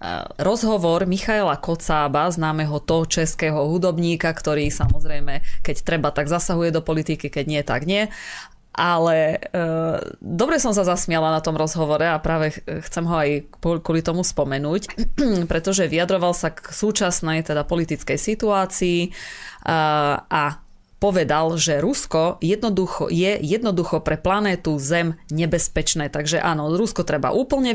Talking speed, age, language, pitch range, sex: 130 wpm, 20-39, Slovak, 155-190 Hz, female